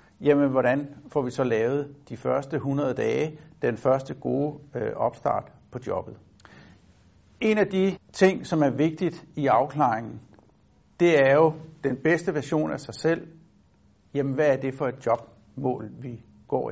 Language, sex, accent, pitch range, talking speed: Danish, male, native, 130-165 Hz, 155 wpm